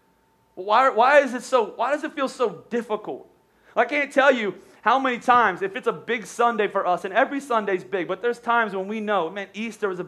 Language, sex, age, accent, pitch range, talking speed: English, male, 30-49, American, 200-250 Hz, 230 wpm